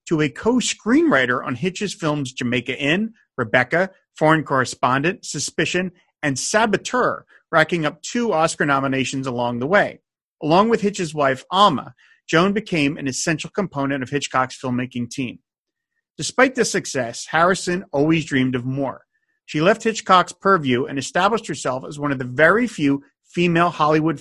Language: English